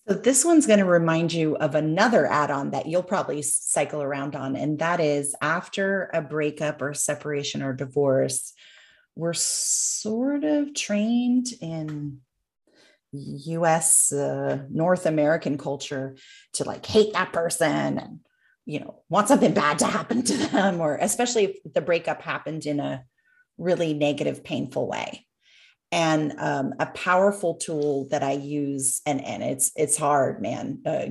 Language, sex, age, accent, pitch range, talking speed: English, female, 30-49, American, 145-170 Hz, 150 wpm